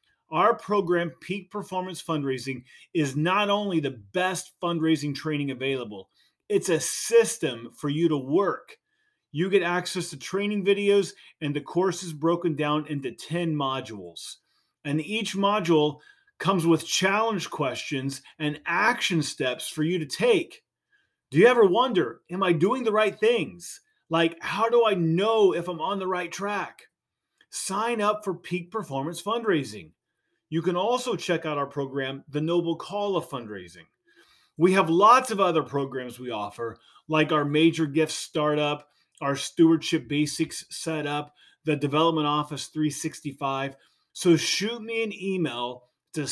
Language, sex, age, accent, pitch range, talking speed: English, male, 30-49, American, 145-190 Hz, 150 wpm